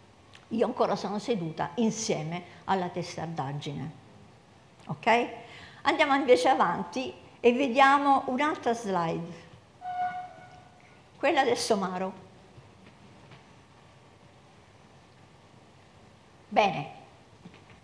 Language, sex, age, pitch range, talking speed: Italian, female, 50-69, 180-240 Hz, 65 wpm